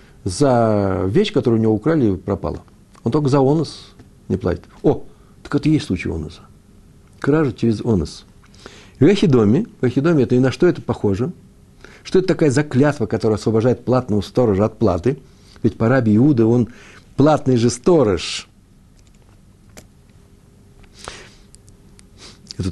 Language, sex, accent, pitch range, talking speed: Russian, male, native, 100-125 Hz, 125 wpm